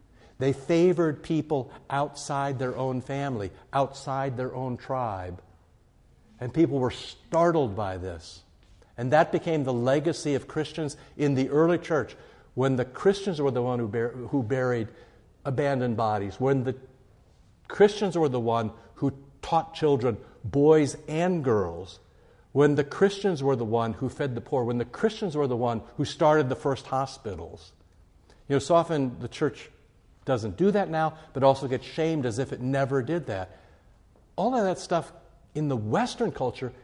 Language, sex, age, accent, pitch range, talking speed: English, male, 60-79, American, 120-165 Hz, 165 wpm